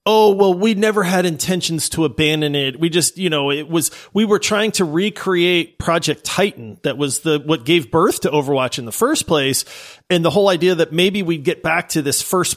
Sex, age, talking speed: male, 40-59, 220 wpm